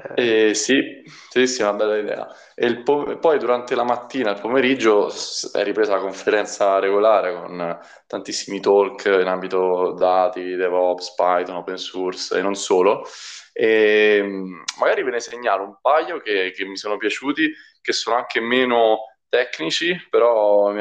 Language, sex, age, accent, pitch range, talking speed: Italian, male, 20-39, native, 95-115 Hz, 155 wpm